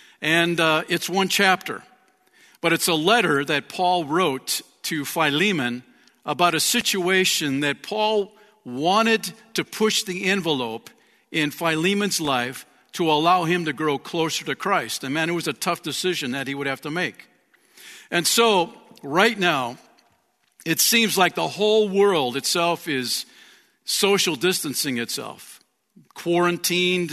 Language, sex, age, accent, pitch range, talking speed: English, male, 50-69, American, 140-180 Hz, 140 wpm